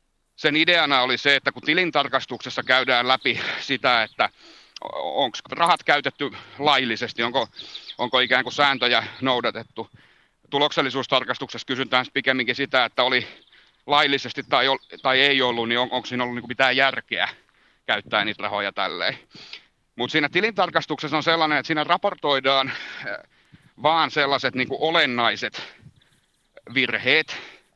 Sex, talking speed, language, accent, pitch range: male, 115 wpm, Finnish, native, 120-145 Hz